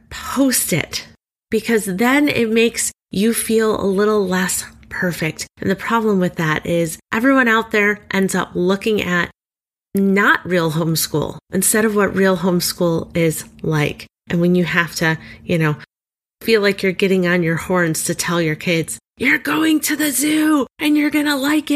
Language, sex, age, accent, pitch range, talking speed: English, female, 30-49, American, 185-300 Hz, 175 wpm